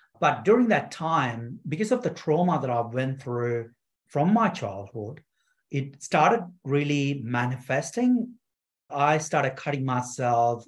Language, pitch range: English, 120-145 Hz